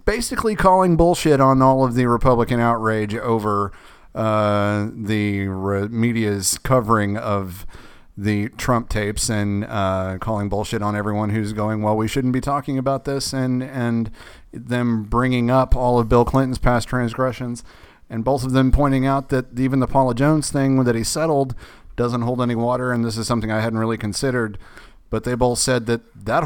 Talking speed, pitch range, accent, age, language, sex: 175 wpm, 105-125 Hz, American, 40-59, English, male